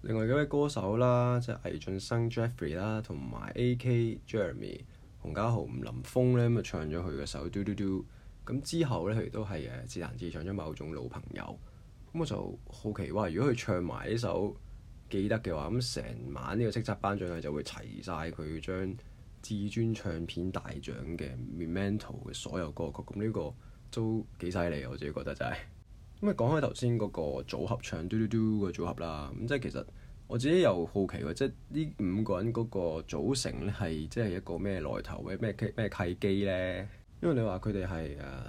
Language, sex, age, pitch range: Chinese, male, 20-39, 85-115 Hz